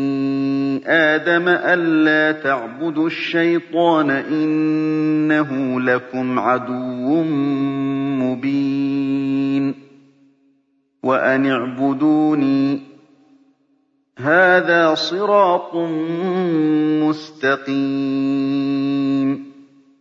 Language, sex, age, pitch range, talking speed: Arabic, male, 40-59, 135-165 Hz, 40 wpm